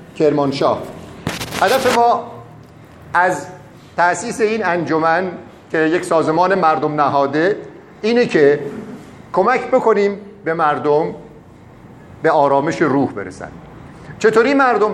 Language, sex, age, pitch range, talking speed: Persian, male, 50-69, 155-205 Hz, 95 wpm